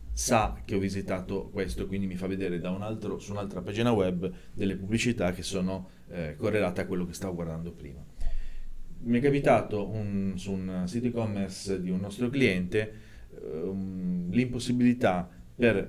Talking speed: 160 wpm